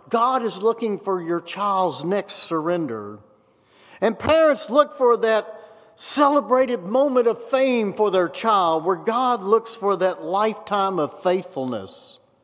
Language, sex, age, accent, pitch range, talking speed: English, male, 50-69, American, 180-245 Hz, 135 wpm